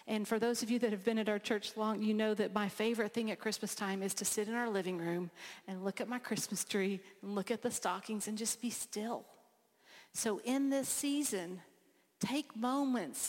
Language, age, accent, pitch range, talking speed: English, 50-69, American, 195-230 Hz, 220 wpm